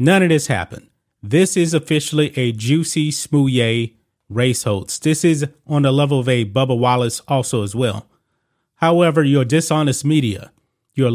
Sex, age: male, 30-49